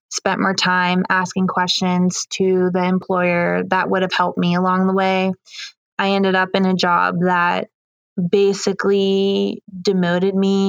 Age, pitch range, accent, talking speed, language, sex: 20-39, 175-195 Hz, American, 145 wpm, English, female